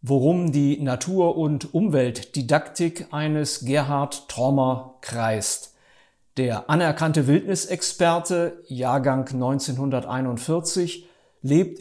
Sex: male